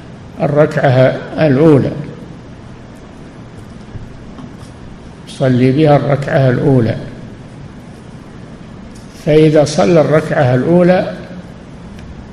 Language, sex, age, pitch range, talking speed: Arabic, male, 50-69, 135-160 Hz, 50 wpm